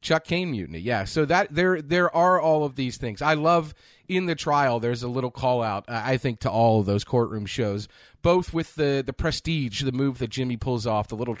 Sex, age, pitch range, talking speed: male, 30-49, 110-145 Hz, 225 wpm